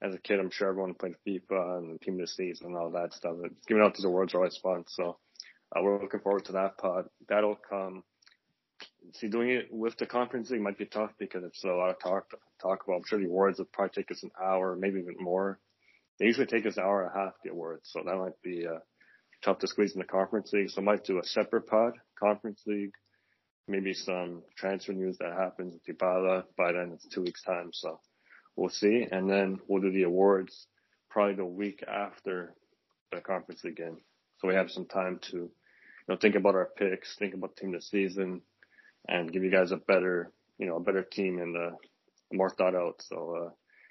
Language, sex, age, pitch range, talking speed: English, male, 20-39, 90-100 Hz, 225 wpm